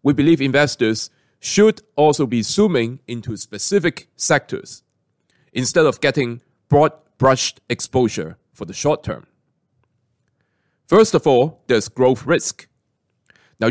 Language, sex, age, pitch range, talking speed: English, male, 30-49, 120-165 Hz, 115 wpm